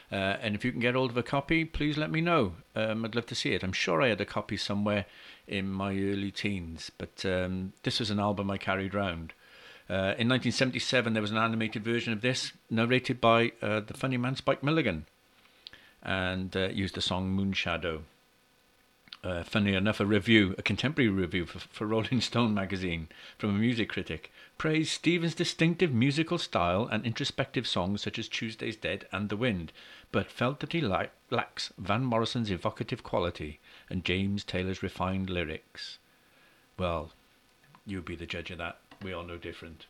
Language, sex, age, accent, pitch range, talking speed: English, male, 50-69, British, 95-120 Hz, 180 wpm